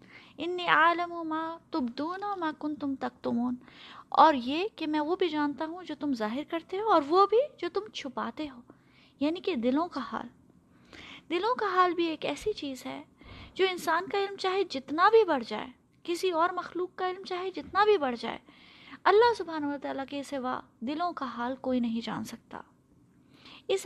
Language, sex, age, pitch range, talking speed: Urdu, female, 20-39, 255-330 Hz, 190 wpm